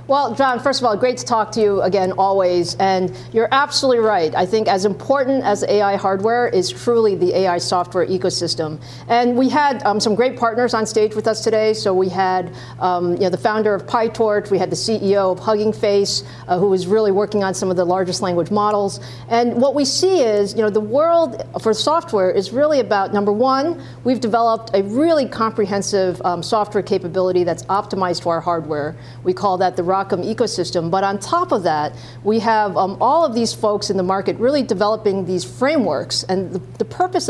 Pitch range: 180-230 Hz